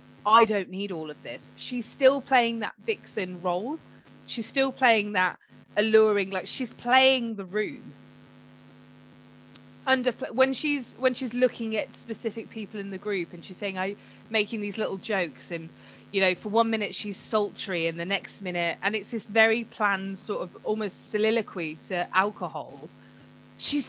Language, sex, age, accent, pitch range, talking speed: English, female, 20-39, British, 185-235 Hz, 165 wpm